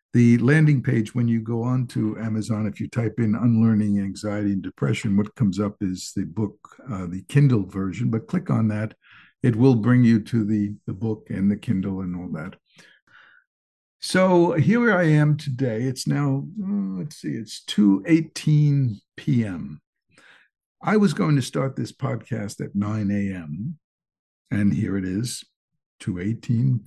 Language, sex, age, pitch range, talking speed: English, male, 60-79, 105-155 Hz, 165 wpm